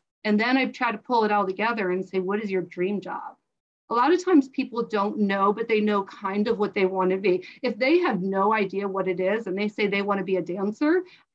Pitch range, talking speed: 195-240 Hz, 270 wpm